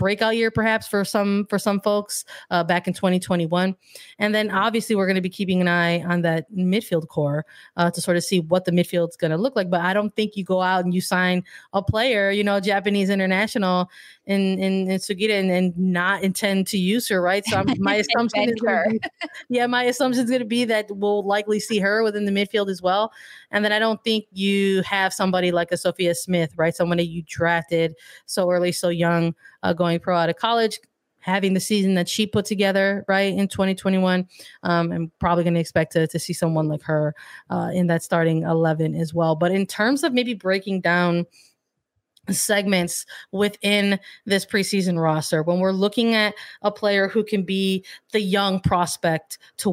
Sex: female